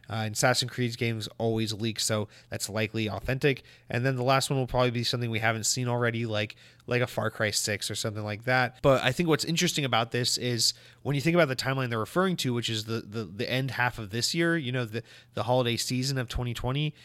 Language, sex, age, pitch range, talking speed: English, male, 30-49, 115-130 Hz, 240 wpm